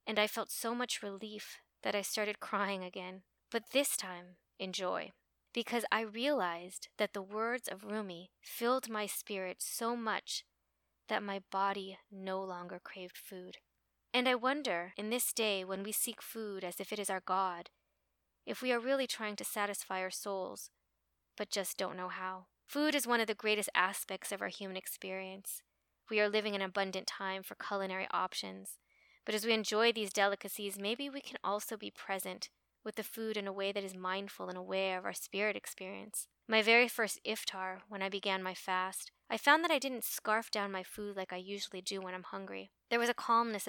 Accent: American